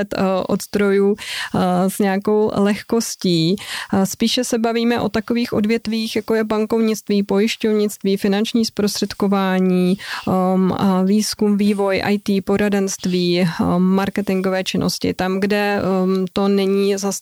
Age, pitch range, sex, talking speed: 20-39, 185-215 Hz, female, 95 wpm